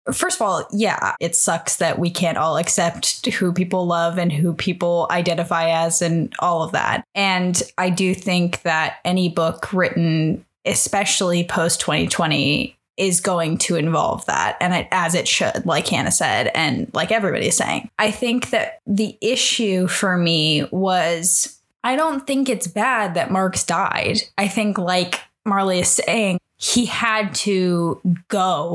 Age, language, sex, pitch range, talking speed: 10-29, English, female, 175-215 Hz, 160 wpm